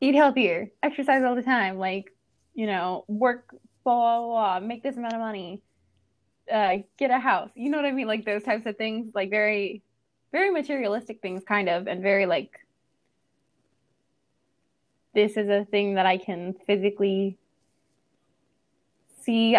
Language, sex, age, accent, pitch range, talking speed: English, female, 20-39, American, 190-235 Hz, 160 wpm